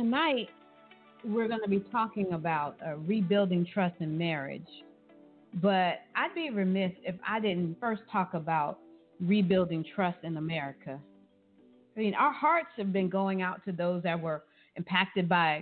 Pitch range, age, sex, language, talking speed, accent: 170-215 Hz, 40-59, female, English, 155 wpm, American